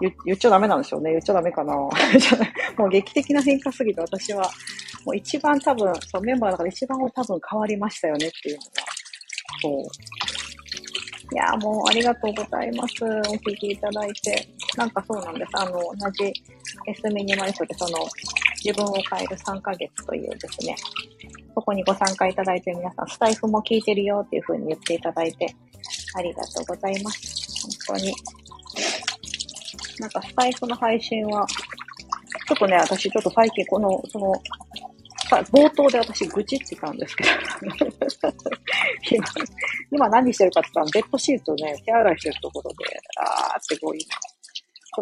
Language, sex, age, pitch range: Japanese, female, 40-59, 185-245 Hz